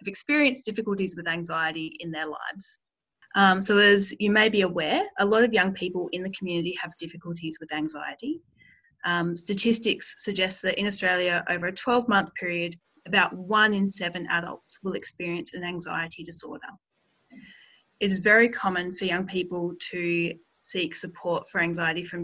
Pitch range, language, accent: 170-200 Hz, English, Australian